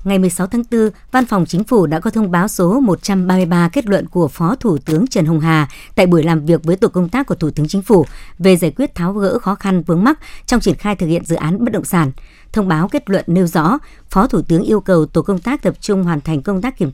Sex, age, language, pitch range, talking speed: male, 60-79, Vietnamese, 170-205 Hz, 270 wpm